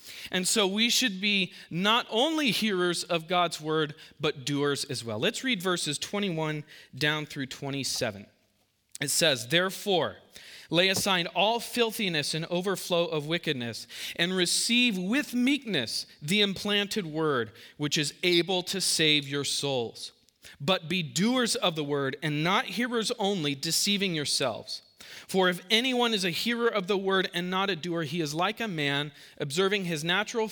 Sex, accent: male, American